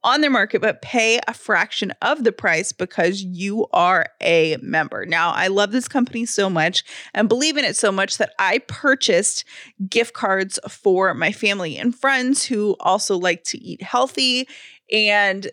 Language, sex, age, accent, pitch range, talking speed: English, female, 30-49, American, 190-255 Hz, 175 wpm